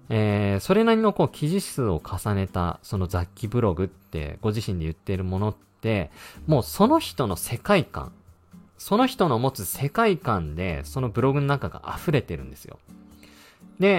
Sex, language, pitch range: male, Japanese, 95-155 Hz